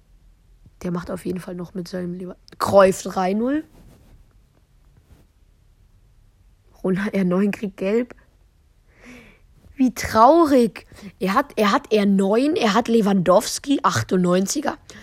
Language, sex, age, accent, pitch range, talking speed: English, female, 20-39, German, 175-215 Hz, 105 wpm